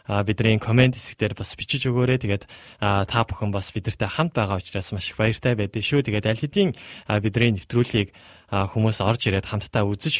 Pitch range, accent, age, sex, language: 100-125 Hz, native, 20-39, male, Korean